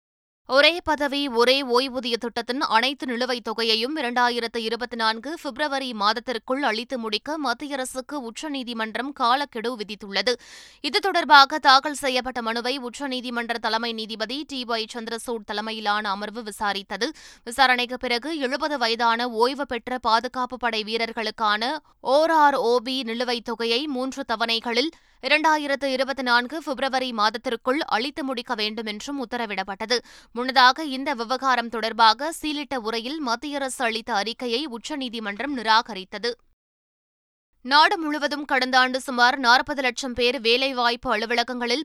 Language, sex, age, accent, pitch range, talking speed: Tamil, female, 20-39, native, 235-280 Hz, 110 wpm